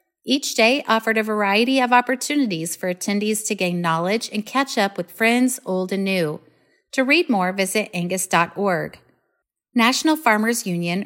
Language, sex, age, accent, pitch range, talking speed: English, female, 30-49, American, 185-250 Hz, 150 wpm